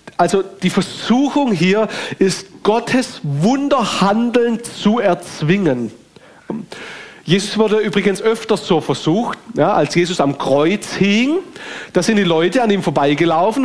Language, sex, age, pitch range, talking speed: German, male, 40-59, 160-215 Hz, 125 wpm